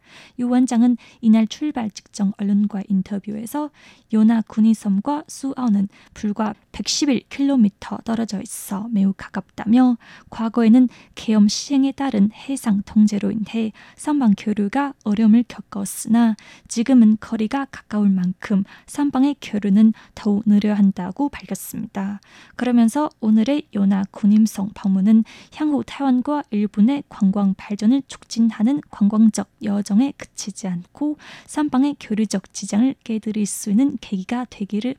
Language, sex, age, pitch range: Korean, female, 20-39, 200-245 Hz